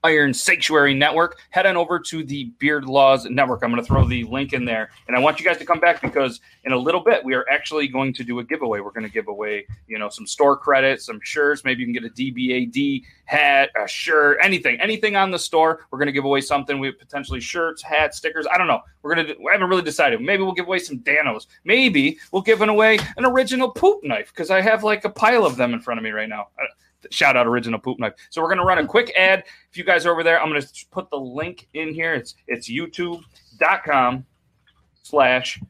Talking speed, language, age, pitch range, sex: 245 wpm, English, 30-49, 130-180 Hz, male